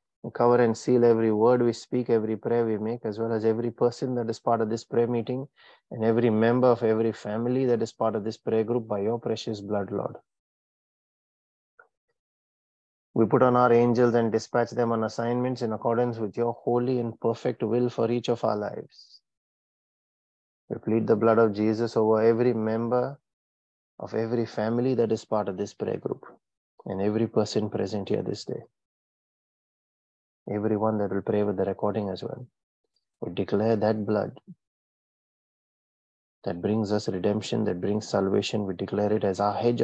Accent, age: Indian, 30-49